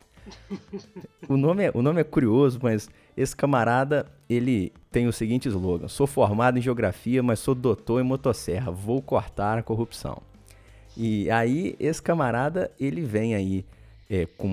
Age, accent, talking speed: 20-39, Brazilian, 155 wpm